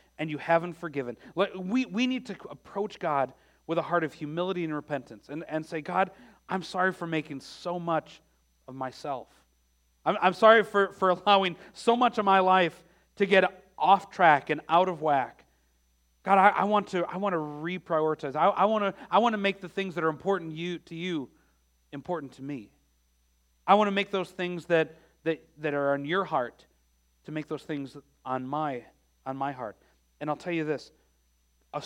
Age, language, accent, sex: 40-59, English, American, male